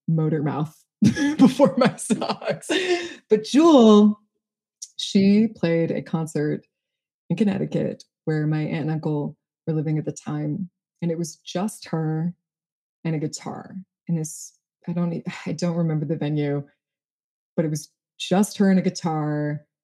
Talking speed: 145 wpm